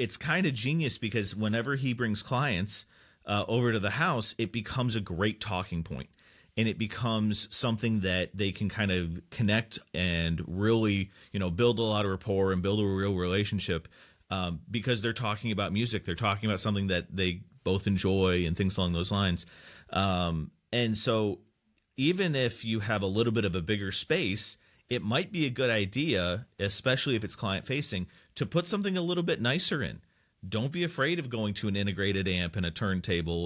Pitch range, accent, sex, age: 95-115 Hz, American, male, 30-49